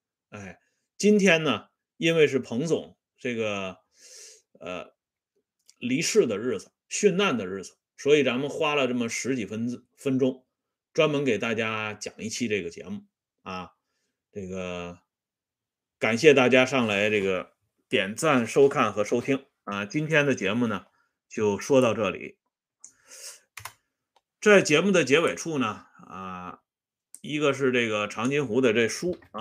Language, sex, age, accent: Swedish, male, 30-49, Chinese